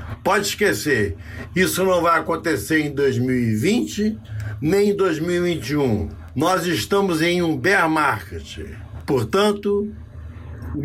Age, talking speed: 60-79, 105 wpm